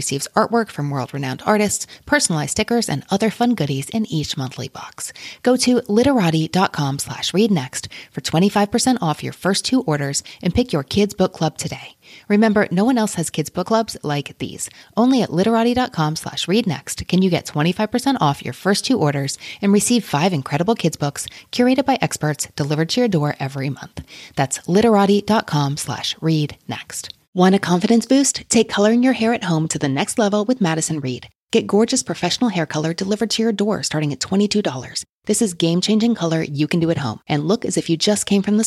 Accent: American